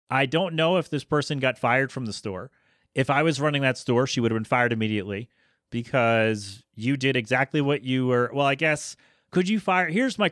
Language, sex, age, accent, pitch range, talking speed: English, male, 30-49, American, 115-160 Hz, 220 wpm